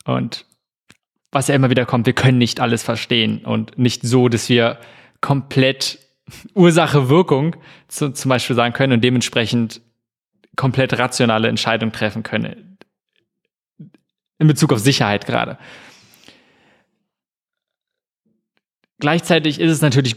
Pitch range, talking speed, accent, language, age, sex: 120-150 Hz, 115 wpm, German, German, 20-39, male